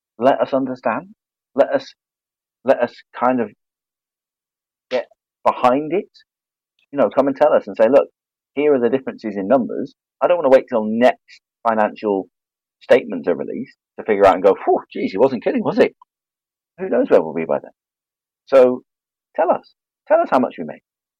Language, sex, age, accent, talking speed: English, male, 40-59, British, 185 wpm